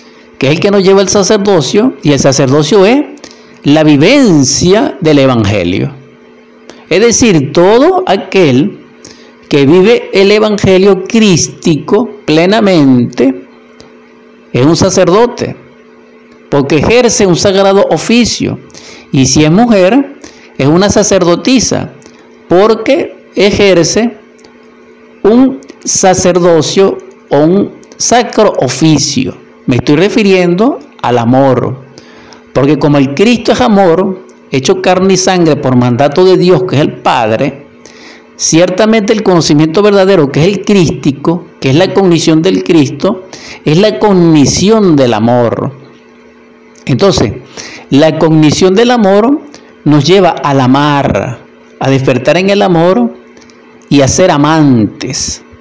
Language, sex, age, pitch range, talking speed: Spanish, male, 50-69, 140-205 Hz, 120 wpm